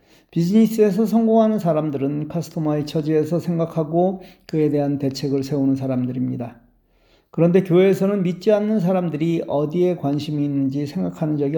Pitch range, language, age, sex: 140-180 Hz, Korean, 40-59, male